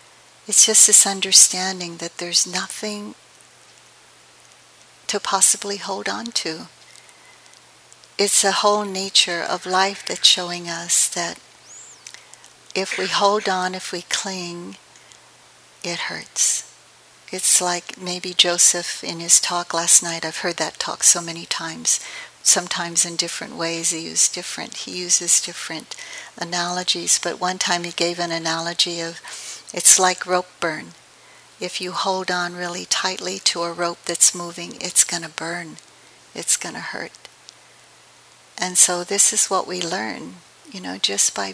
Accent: American